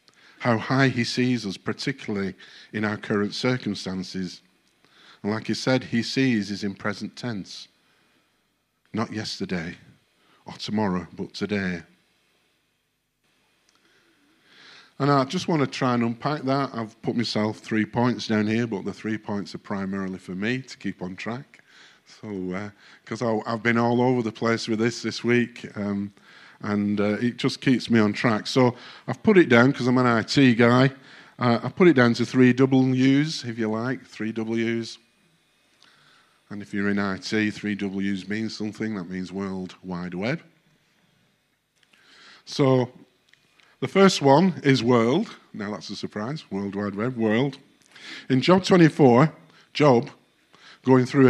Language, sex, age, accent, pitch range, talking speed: English, male, 50-69, British, 105-130 Hz, 155 wpm